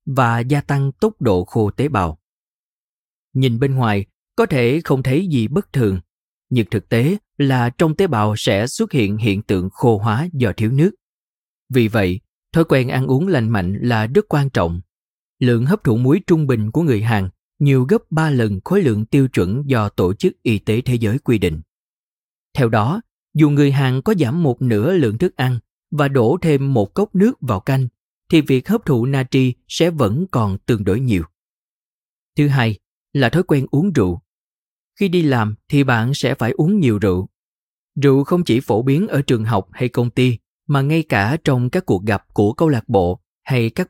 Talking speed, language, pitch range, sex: 200 wpm, Vietnamese, 105-145 Hz, male